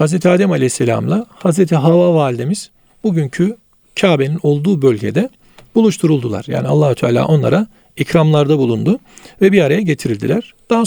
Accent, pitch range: native, 145-195 Hz